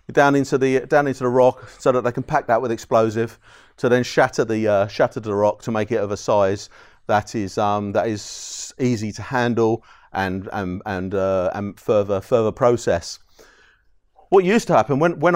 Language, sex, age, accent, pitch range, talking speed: English, male, 40-59, British, 110-145 Hz, 195 wpm